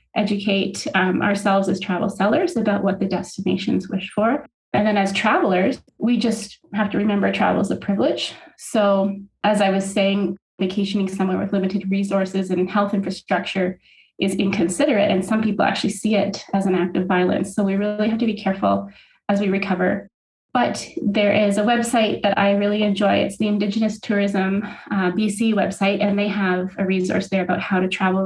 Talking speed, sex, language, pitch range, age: 185 wpm, female, English, 190-215 Hz, 30-49